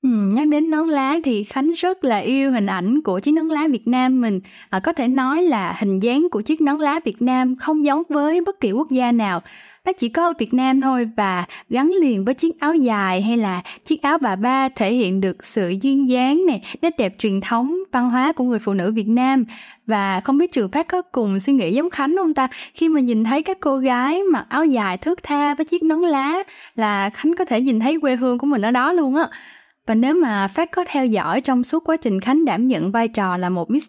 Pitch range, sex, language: 220-295 Hz, female, Vietnamese